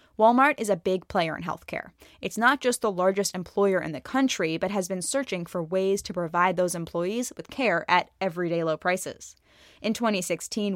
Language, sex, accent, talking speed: English, female, American, 190 wpm